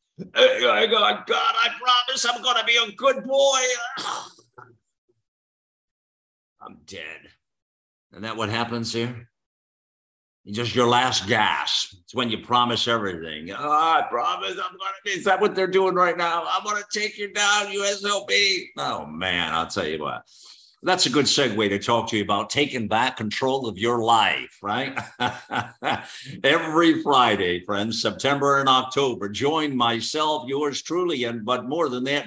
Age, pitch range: 50-69, 110-180 Hz